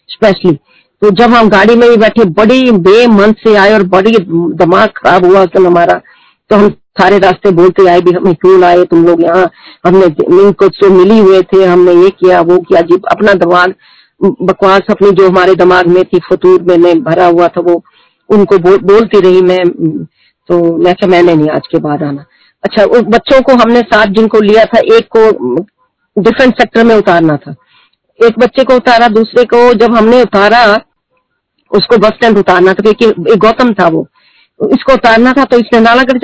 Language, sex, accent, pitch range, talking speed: Hindi, female, native, 185-240 Hz, 185 wpm